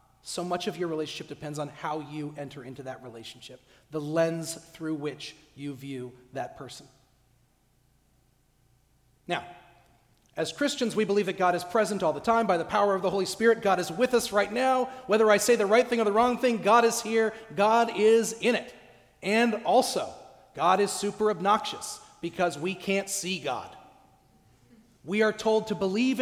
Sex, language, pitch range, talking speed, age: male, English, 170-245 Hz, 180 wpm, 40-59